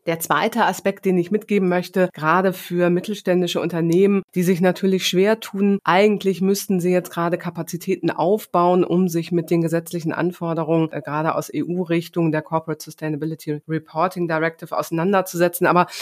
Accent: German